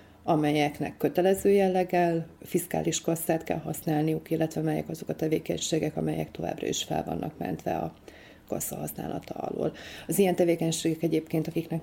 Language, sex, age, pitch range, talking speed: Hungarian, female, 30-49, 155-180 Hz, 135 wpm